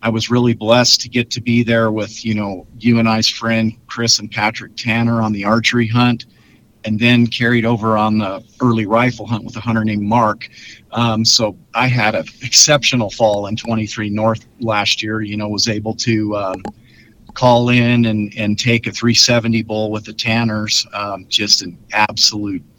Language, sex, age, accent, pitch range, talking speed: English, male, 50-69, American, 110-120 Hz, 185 wpm